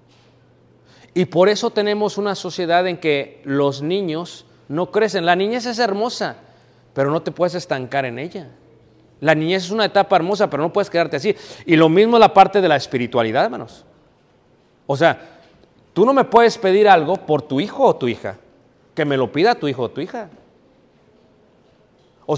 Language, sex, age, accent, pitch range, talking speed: Spanish, male, 40-59, Mexican, 165-225 Hz, 180 wpm